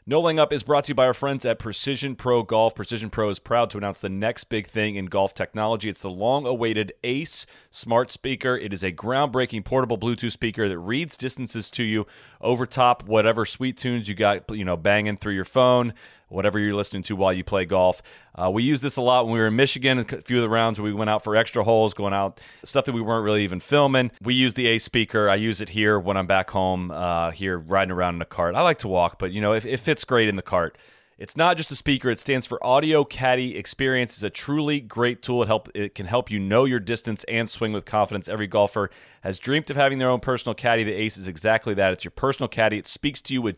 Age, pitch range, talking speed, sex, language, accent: 30-49, 100-125 Hz, 255 wpm, male, English, American